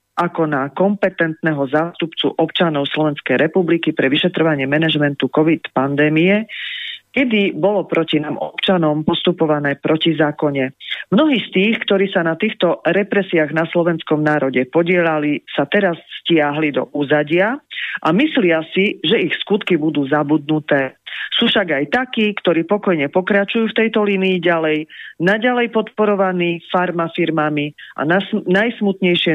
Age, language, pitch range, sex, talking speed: 40-59, Slovak, 150-190 Hz, female, 125 wpm